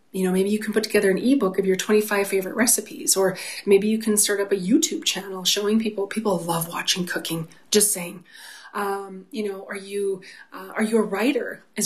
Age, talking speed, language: 30-49, 215 wpm, English